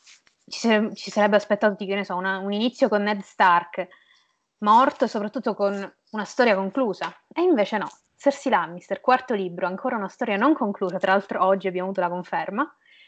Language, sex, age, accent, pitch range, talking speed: Italian, female, 20-39, native, 190-255 Hz, 175 wpm